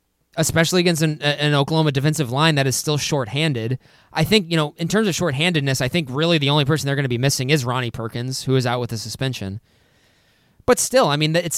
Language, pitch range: English, 125-165 Hz